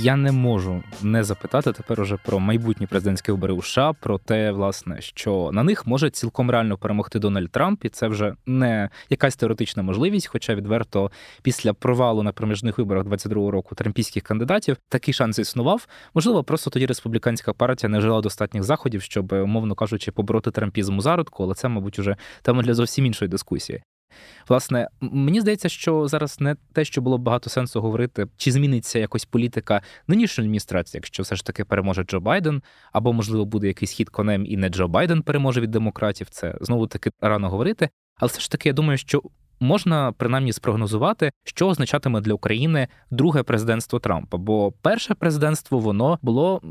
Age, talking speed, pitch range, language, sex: 20-39, 175 wpm, 105-135 Hz, Ukrainian, male